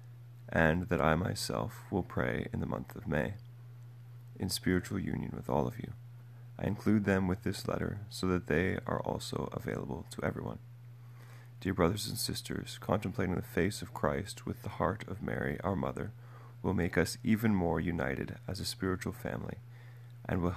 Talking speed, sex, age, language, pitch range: 175 wpm, male, 30-49, English, 90-120 Hz